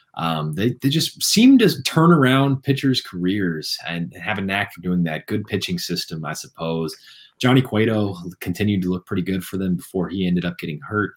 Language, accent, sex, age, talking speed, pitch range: English, American, male, 20-39, 200 wpm, 85-125 Hz